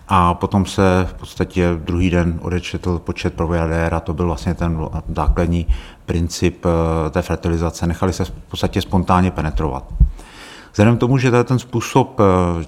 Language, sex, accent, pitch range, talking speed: Czech, male, native, 85-100 Hz, 145 wpm